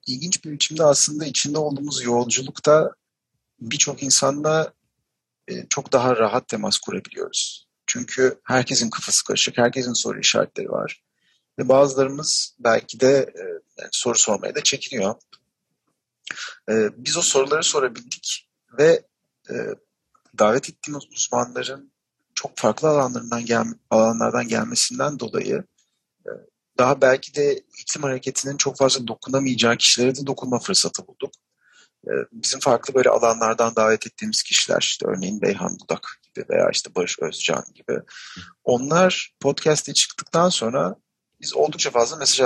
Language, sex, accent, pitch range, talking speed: Turkish, male, native, 120-165 Hz, 115 wpm